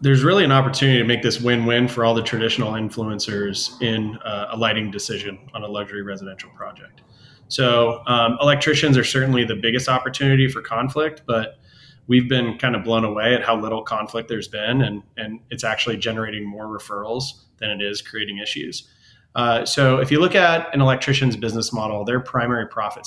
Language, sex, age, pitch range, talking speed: English, male, 20-39, 110-130 Hz, 185 wpm